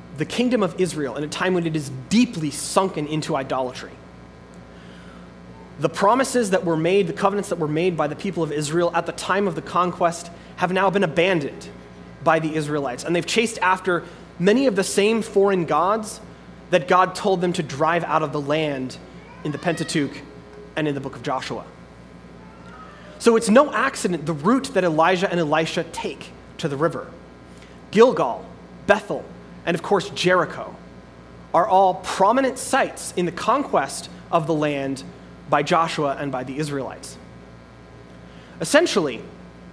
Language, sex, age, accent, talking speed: English, male, 30-49, American, 165 wpm